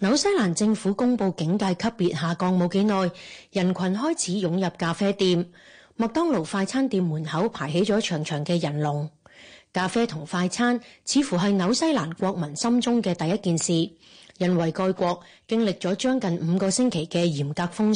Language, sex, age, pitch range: Chinese, female, 30-49, 175-225 Hz